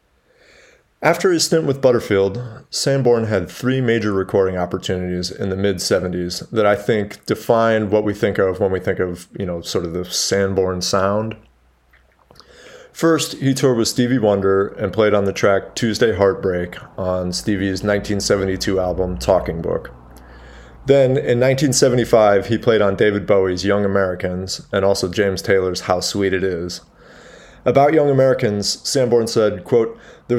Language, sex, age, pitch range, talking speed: English, male, 30-49, 90-120 Hz, 150 wpm